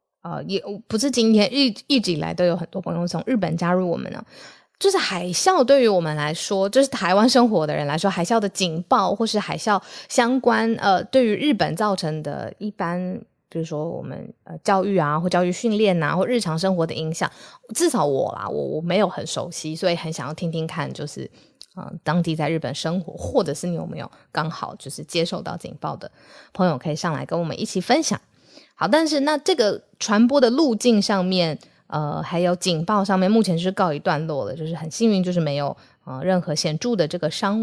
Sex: female